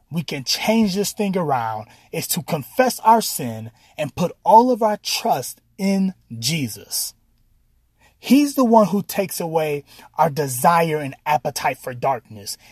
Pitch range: 130-210 Hz